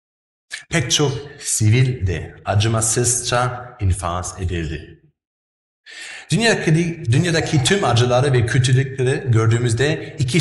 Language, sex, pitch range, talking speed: Turkish, male, 85-125 Hz, 85 wpm